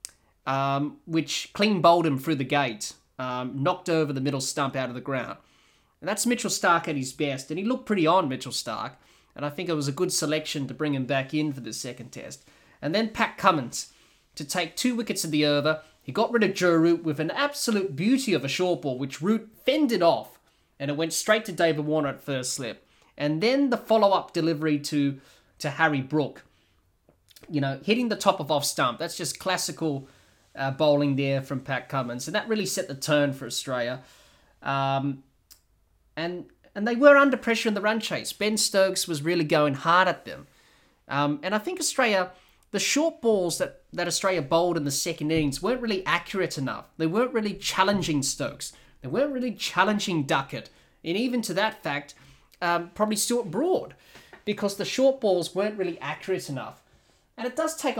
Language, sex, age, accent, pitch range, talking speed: English, male, 20-39, Australian, 140-200 Hz, 200 wpm